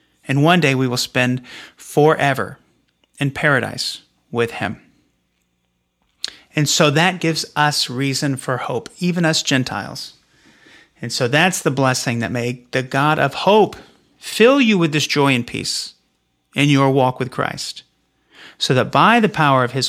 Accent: American